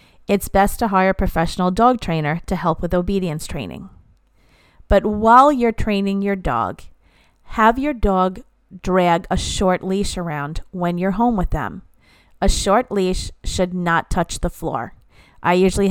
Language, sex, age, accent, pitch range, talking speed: English, female, 40-59, American, 170-205 Hz, 160 wpm